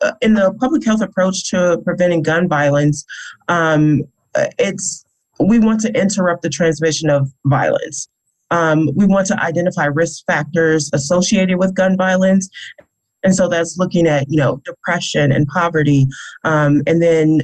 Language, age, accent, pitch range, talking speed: English, 30-49, American, 150-190 Hz, 150 wpm